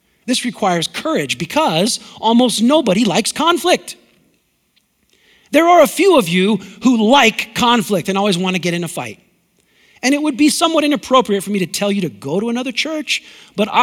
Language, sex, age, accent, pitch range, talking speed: English, male, 40-59, American, 145-240 Hz, 180 wpm